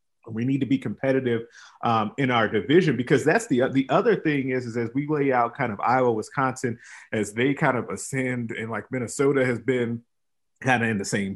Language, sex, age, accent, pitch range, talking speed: English, male, 30-49, American, 115-135 Hz, 210 wpm